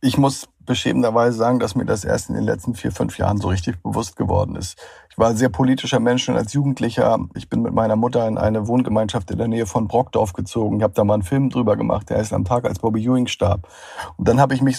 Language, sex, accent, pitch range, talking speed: German, male, German, 100-125 Hz, 255 wpm